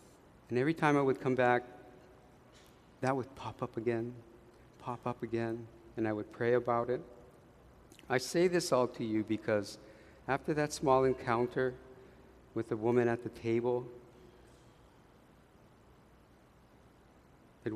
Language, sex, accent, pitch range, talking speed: English, male, American, 115-130 Hz, 130 wpm